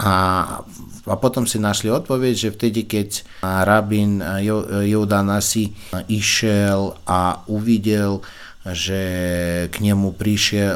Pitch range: 95-115 Hz